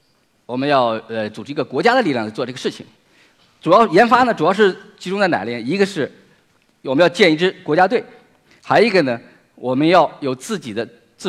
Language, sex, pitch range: Chinese, male, 120-170 Hz